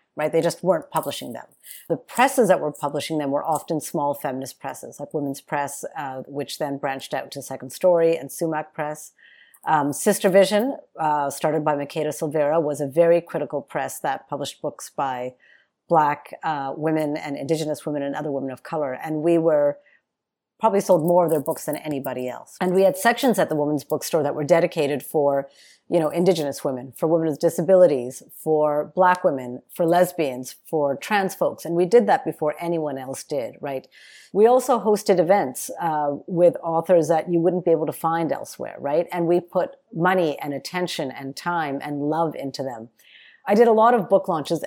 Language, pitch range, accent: English, 150-190 Hz, American